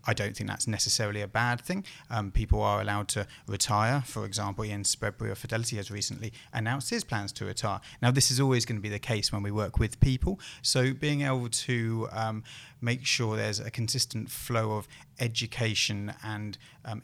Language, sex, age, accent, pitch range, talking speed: English, male, 30-49, British, 105-130 Hz, 195 wpm